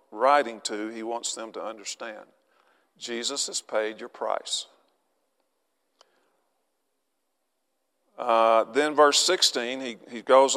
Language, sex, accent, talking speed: English, male, American, 110 wpm